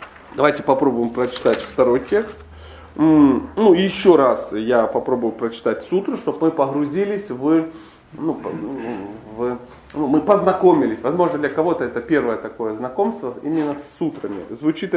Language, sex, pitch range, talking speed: Russian, male, 125-190 Hz, 130 wpm